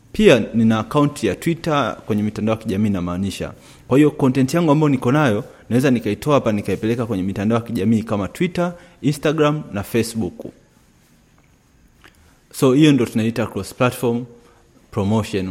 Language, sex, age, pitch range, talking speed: Swahili, male, 30-49, 105-125 Hz, 140 wpm